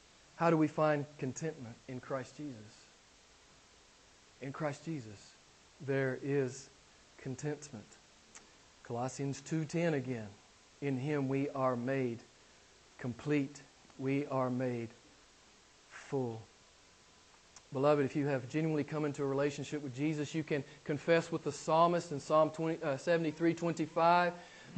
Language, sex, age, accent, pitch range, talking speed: English, male, 40-59, American, 145-235 Hz, 115 wpm